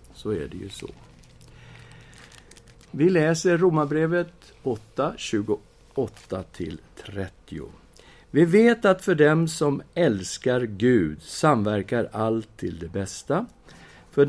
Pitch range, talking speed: 100-155 Hz, 100 wpm